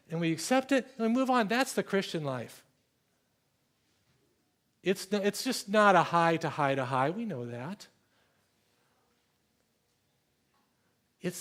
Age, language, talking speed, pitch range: 50-69, English, 135 wpm, 135-190 Hz